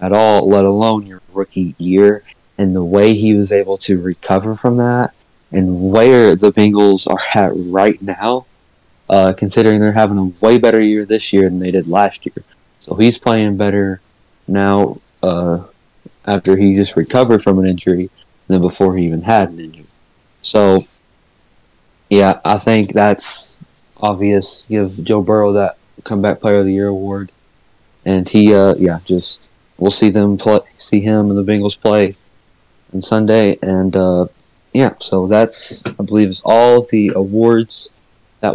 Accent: American